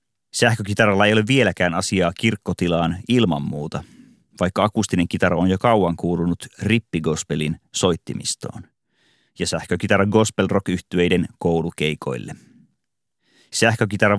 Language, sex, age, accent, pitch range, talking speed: Finnish, male, 30-49, native, 85-105 Hz, 95 wpm